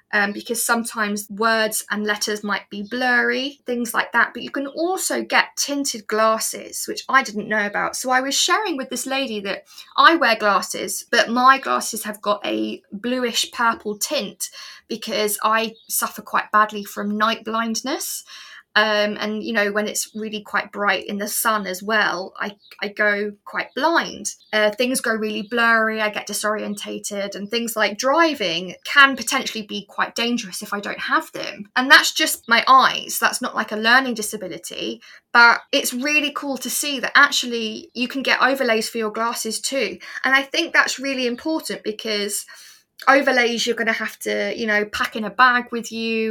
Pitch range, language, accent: 210-260 Hz, English, British